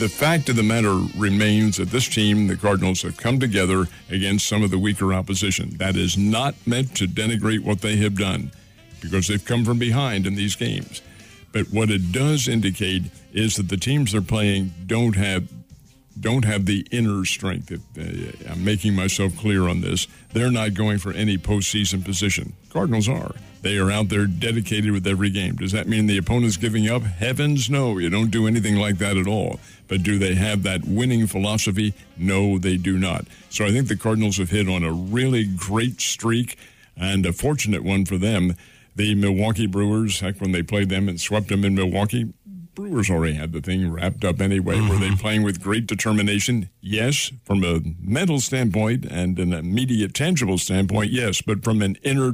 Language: English